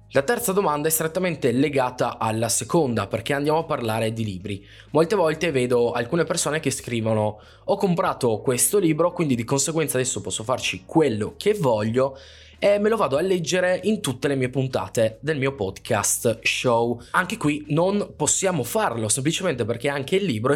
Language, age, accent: Italian, 20-39, native